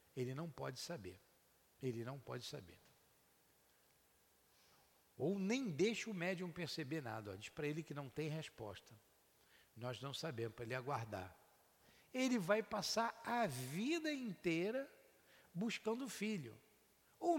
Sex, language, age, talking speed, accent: male, Portuguese, 60-79, 130 wpm, Brazilian